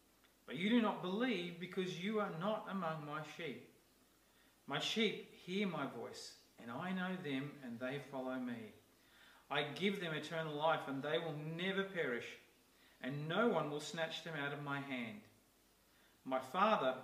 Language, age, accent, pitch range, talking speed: English, 40-59, Australian, 130-185 Hz, 165 wpm